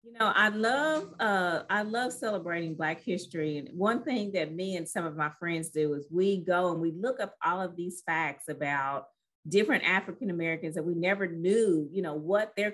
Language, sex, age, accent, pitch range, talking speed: English, female, 40-59, American, 170-220 Hz, 205 wpm